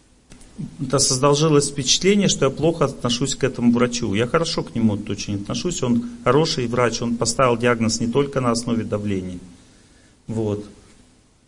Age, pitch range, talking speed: 40-59, 110-155 Hz, 140 wpm